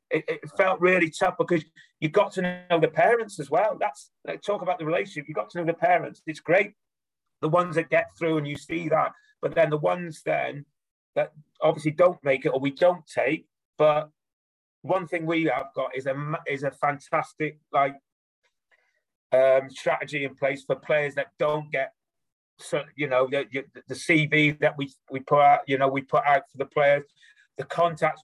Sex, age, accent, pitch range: male, 30-49, British, 140-165 Hz